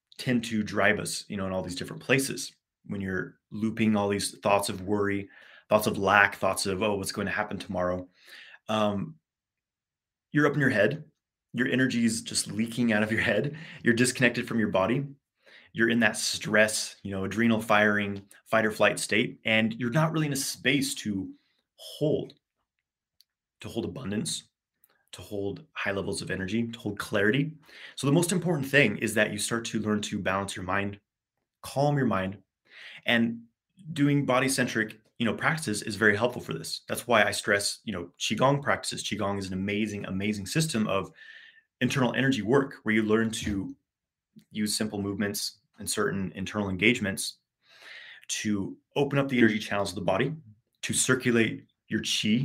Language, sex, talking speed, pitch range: English, male, 175 wpm, 100-125 Hz